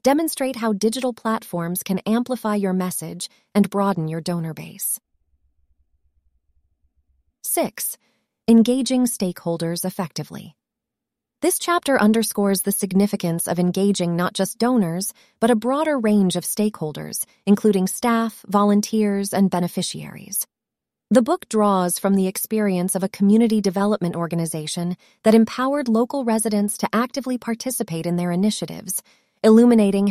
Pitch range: 170-225 Hz